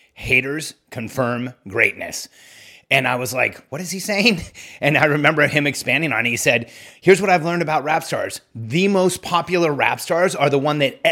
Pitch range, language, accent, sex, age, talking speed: 135-170 Hz, English, American, male, 30-49, 195 wpm